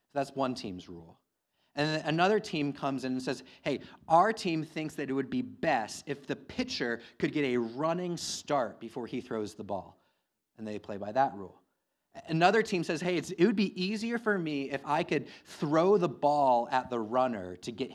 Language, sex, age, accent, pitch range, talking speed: English, male, 30-49, American, 125-185 Hz, 205 wpm